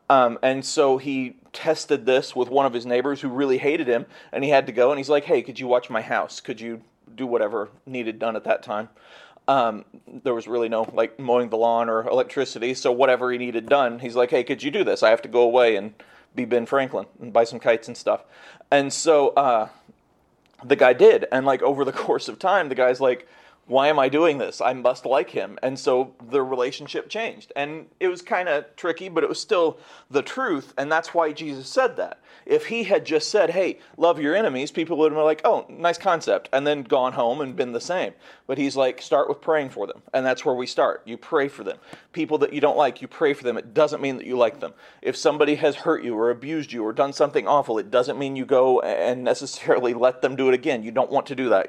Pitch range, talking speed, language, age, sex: 125-155 Hz, 245 wpm, English, 30-49, male